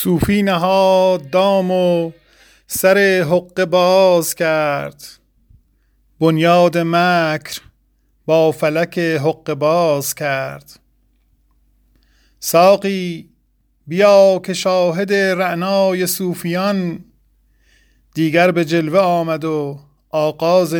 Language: Persian